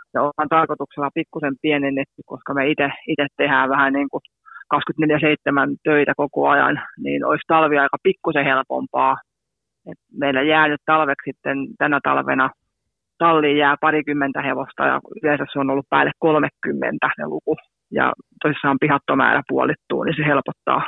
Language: Finnish